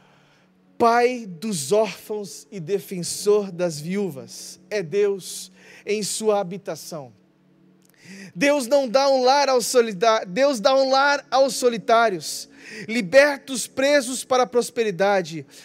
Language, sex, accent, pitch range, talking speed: Portuguese, male, Brazilian, 160-205 Hz, 115 wpm